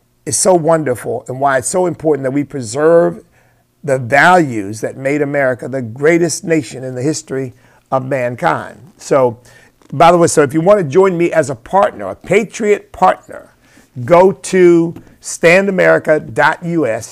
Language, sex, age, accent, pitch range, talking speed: English, male, 50-69, American, 130-165 Hz, 155 wpm